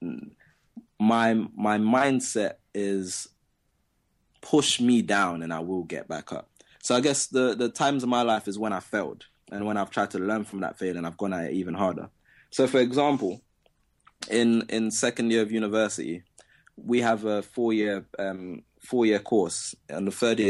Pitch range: 90-115 Hz